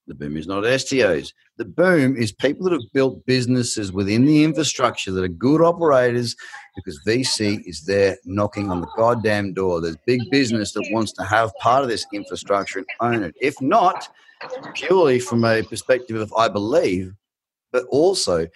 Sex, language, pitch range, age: male, English, 105-130 Hz, 30-49